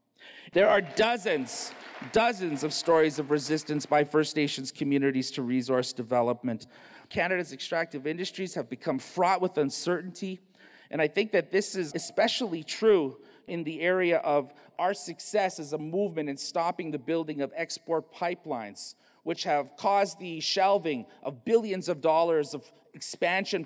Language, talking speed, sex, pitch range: English, 145 wpm, male, 145-195 Hz